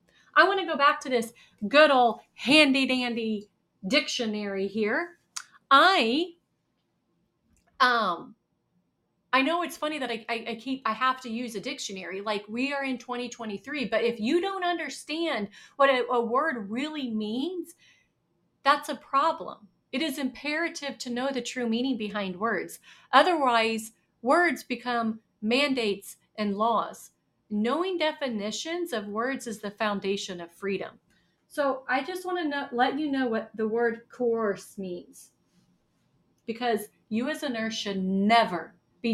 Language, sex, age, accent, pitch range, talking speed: English, female, 40-59, American, 215-275 Hz, 145 wpm